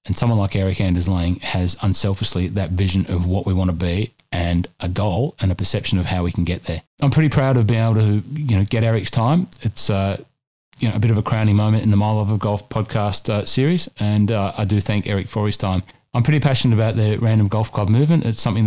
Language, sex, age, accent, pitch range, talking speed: English, male, 30-49, Australian, 95-115 Hz, 255 wpm